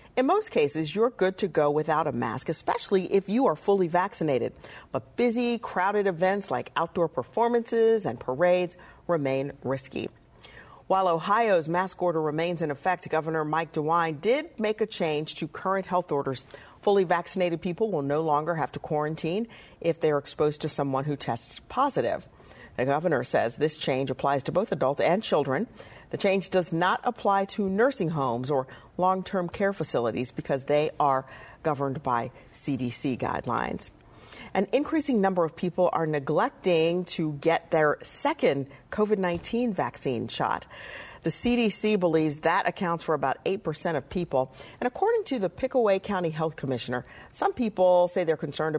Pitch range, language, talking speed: 145-190 Hz, English, 160 wpm